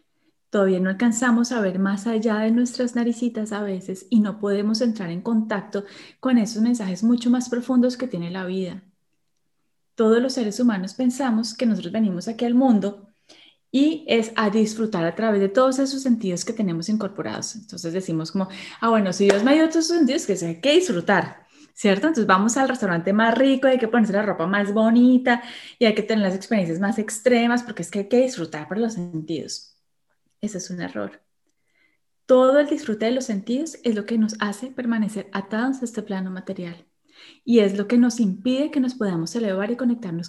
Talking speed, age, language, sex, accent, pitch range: 200 wpm, 10-29, Spanish, female, Colombian, 195-245 Hz